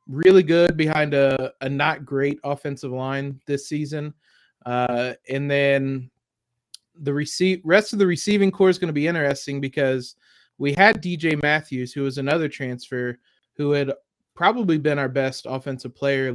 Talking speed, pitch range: 155 wpm, 130-150 Hz